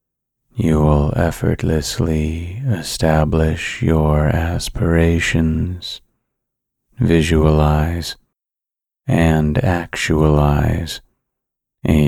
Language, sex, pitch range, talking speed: English, male, 75-90 Hz, 50 wpm